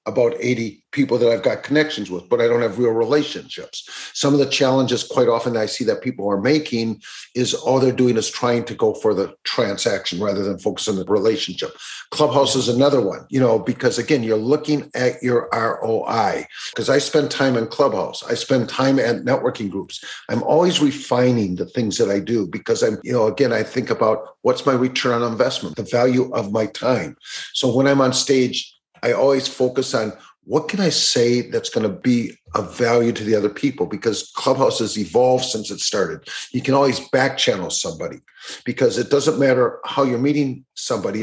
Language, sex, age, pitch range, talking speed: English, male, 50-69, 115-145 Hz, 200 wpm